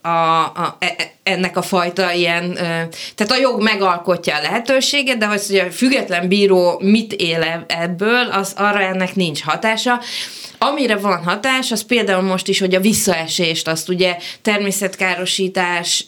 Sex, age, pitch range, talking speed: female, 20-39, 170-200 Hz, 150 wpm